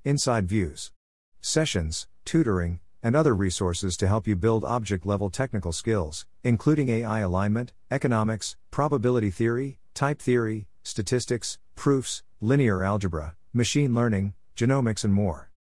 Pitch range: 90-120 Hz